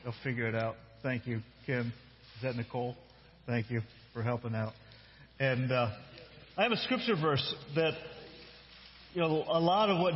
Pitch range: 145-180 Hz